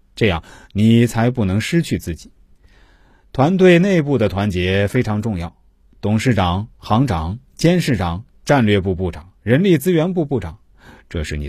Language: Chinese